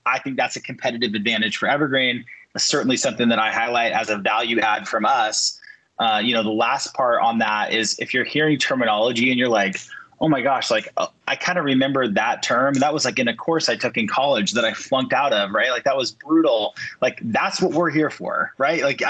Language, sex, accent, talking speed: English, male, American, 230 wpm